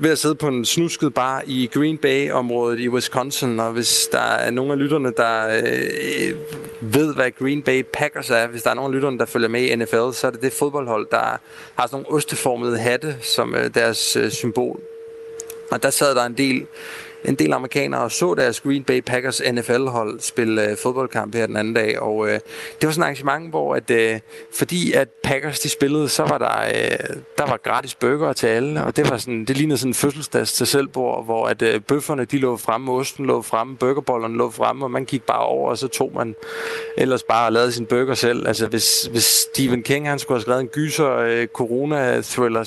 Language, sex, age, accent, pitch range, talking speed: Danish, male, 30-49, native, 120-150 Hz, 220 wpm